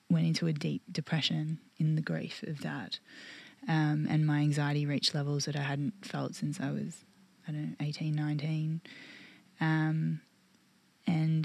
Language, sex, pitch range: English, female, 150-170 Hz